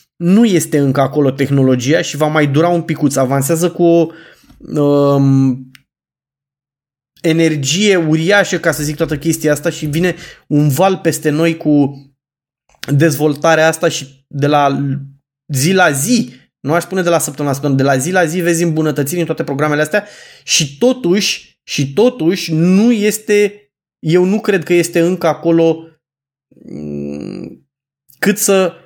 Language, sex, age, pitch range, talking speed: Romanian, male, 20-39, 140-175 Hz, 150 wpm